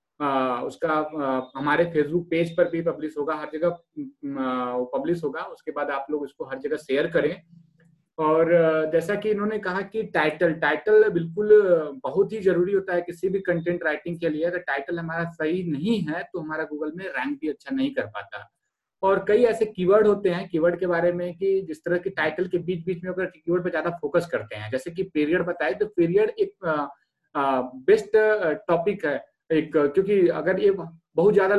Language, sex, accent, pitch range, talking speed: Hindi, male, native, 155-195 Hz, 190 wpm